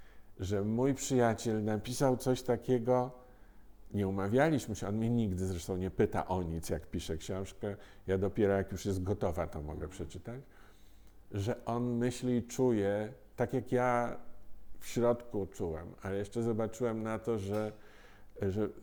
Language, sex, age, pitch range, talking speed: Polish, male, 50-69, 95-115 Hz, 150 wpm